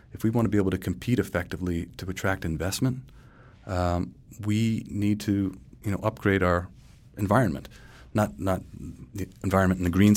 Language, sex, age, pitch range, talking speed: English, male, 30-49, 85-115 Hz, 160 wpm